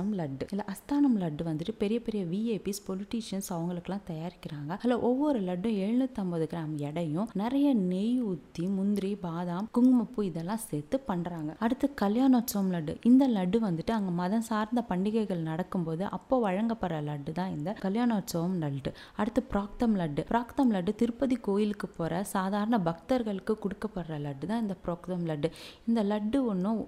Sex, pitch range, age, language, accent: female, 175-230 Hz, 20-39, Tamil, native